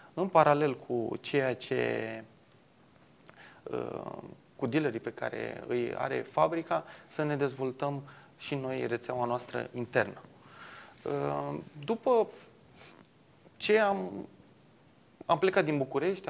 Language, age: Romanian, 20-39